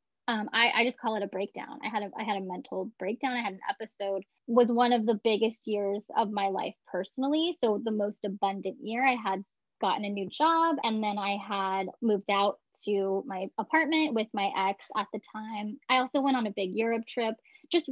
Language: English